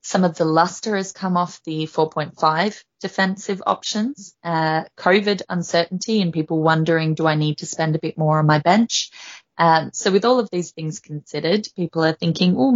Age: 20-39